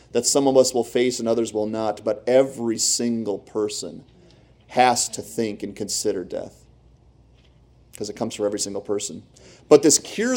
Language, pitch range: English, 105-130 Hz